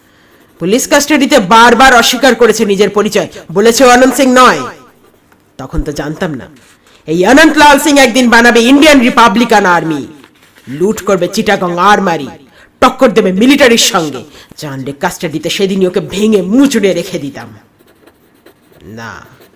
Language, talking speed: Bengali, 30 wpm